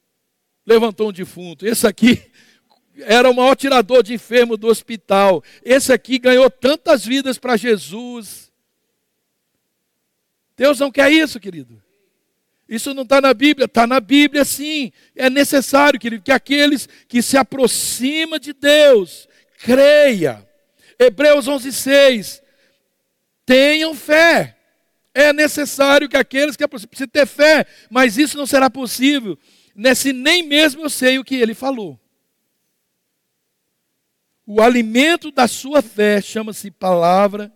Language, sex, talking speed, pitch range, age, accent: Portuguese, male, 130 wpm, 200-275 Hz, 60-79, Brazilian